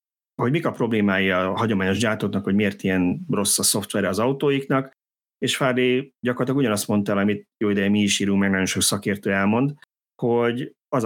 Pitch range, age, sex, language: 95-115 Hz, 30-49, male, Hungarian